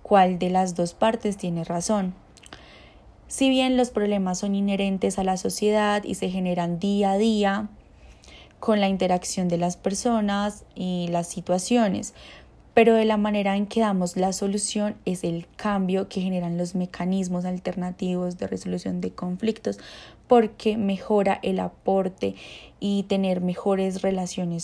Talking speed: 145 wpm